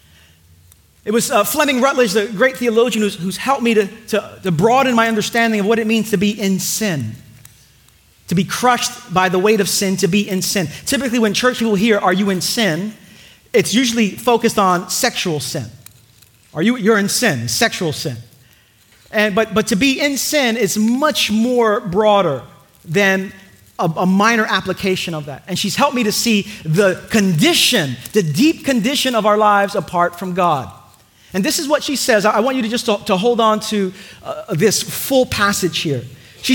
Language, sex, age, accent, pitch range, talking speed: English, male, 30-49, American, 180-240 Hz, 190 wpm